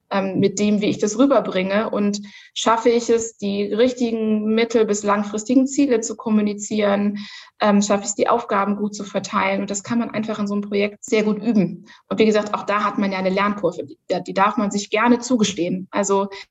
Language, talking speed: German, 205 wpm